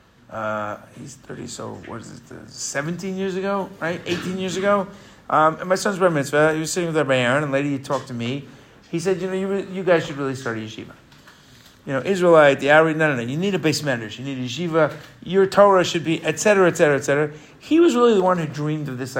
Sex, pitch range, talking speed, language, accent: male, 135-170 Hz, 250 wpm, English, American